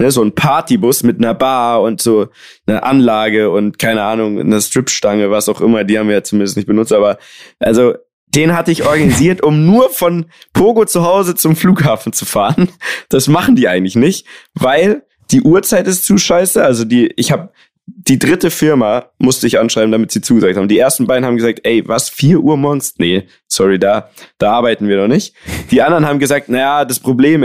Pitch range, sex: 115-150 Hz, male